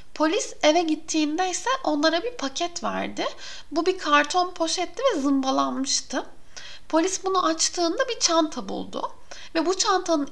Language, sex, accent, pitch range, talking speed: Turkish, female, native, 275-350 Hz, 135 wpm